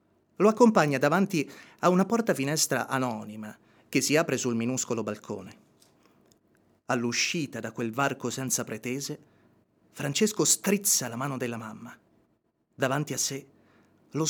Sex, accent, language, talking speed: male, native, Italian, 120 wpm